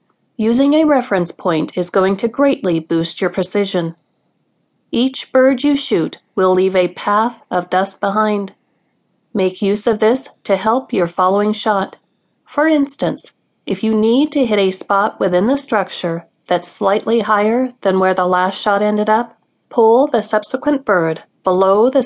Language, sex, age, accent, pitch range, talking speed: English, female, 40-59, American, 185-245 Hz, 160 wpm